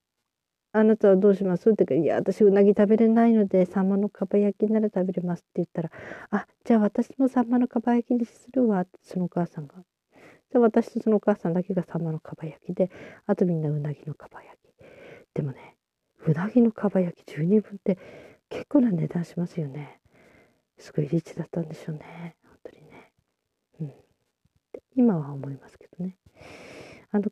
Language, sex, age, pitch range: Japanese, female, 40-59, 160-215 Hz